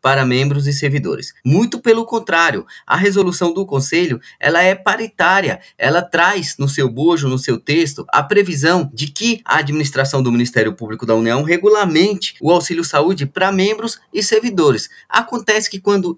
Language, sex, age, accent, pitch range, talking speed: Portuguese, male, 20-39, Brazilian, 145-195 Hz, 160 wpm